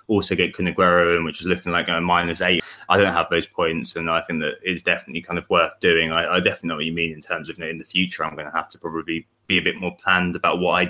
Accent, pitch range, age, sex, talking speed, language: British, 85-100 Hz, 20-39, male, 290 wpm, English